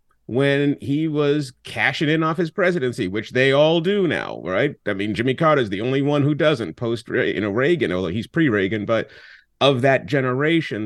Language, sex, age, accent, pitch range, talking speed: English, male, 30-49, American, 110-150 Hz, 195 wpm